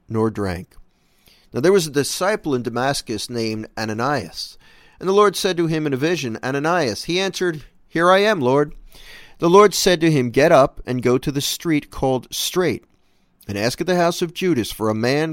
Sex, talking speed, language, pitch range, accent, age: male, 200 wpm, English, 120-175 Hz, American, 50-69